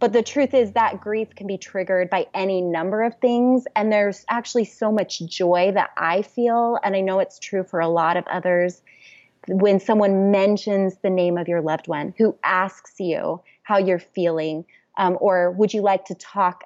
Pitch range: 190-230 Hz